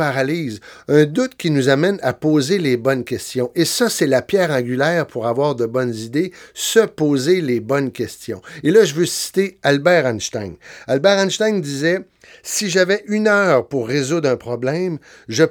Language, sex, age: French, male, 60-79